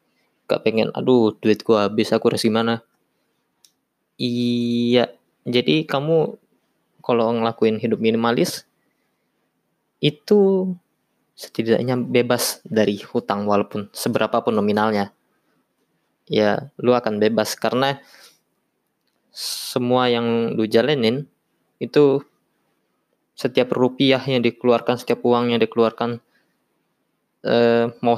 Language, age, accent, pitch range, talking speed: Indonesian, 20-39, native, 110-125 Hz, 95 wpm